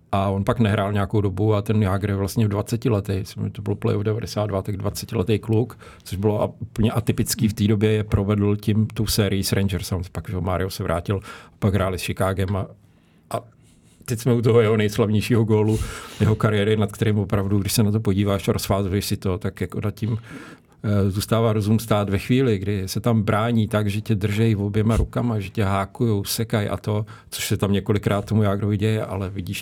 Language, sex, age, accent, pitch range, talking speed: Czech, male, 50-69, native, 100-115 Hz, 215 wpm